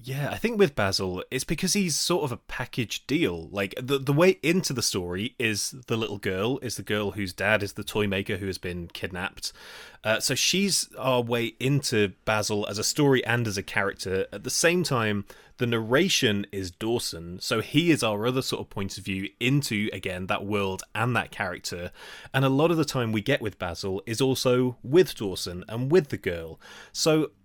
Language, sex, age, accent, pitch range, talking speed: English, male, 20-39, British, 100-130 Hz, 210 wpm